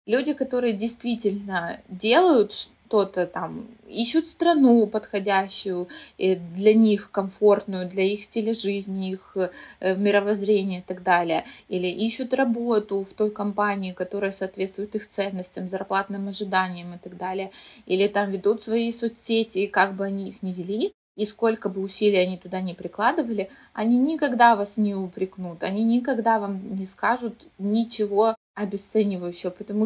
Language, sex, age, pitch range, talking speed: Russian, female, 20-39, 195-230 Hz, 135 wpm